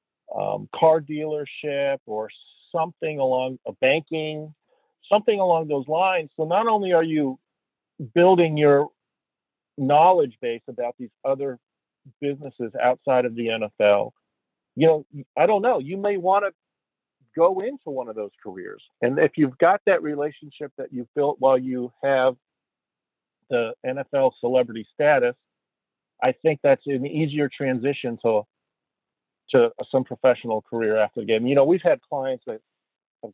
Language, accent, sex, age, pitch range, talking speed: English, American, male, 50-69, 125-160 Hz, 145 wpm